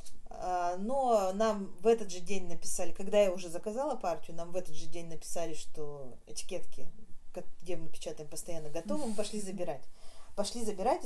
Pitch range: 170-230 Hz